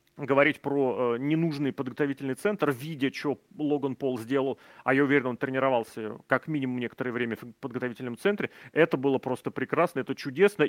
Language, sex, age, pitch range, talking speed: Russian, male, 30-49, 125-160 Hz, 165 wpm